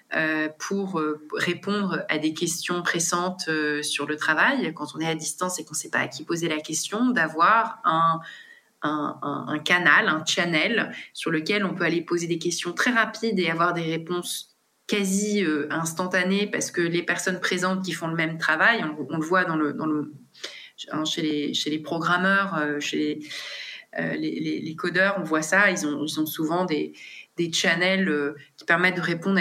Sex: female